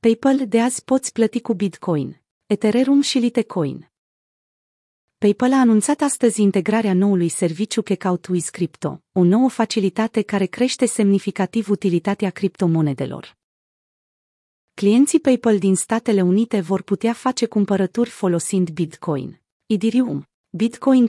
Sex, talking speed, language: female, 115 wpm, Romanian